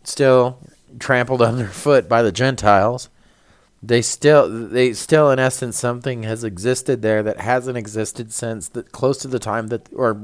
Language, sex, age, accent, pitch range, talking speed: English, male, 40-59, American, 110-135 Hz, 160 wpm